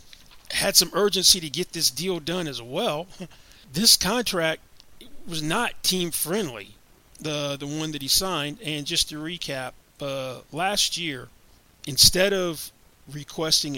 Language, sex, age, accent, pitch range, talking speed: English, male, 40-59, American, 130-160 Hz, 140 wpm